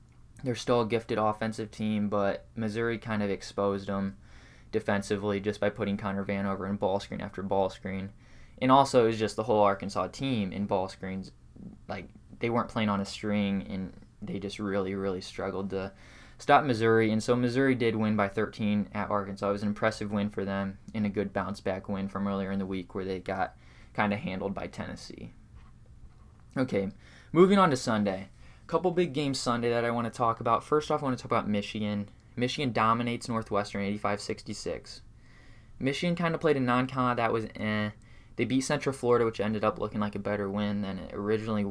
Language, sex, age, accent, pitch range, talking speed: English, male, 20-39, American, 100-115 Hz, 200 wpm